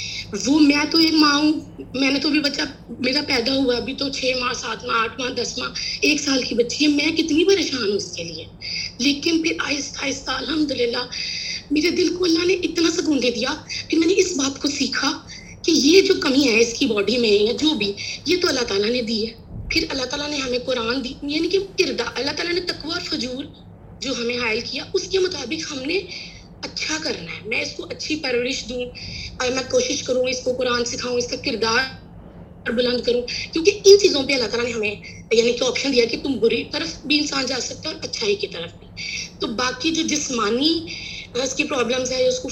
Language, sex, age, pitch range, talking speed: English, female, 20-39, 245-325 Hz, 160 wpm